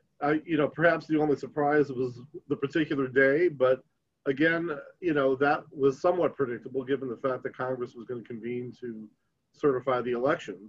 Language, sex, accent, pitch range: English, male, American, 125-155 Hz